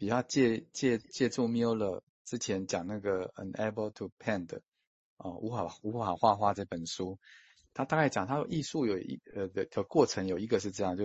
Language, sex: Chinese, male